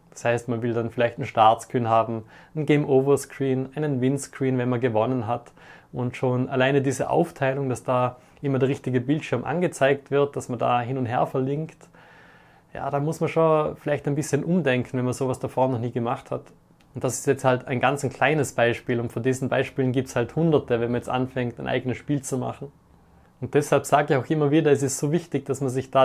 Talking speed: 220 wpm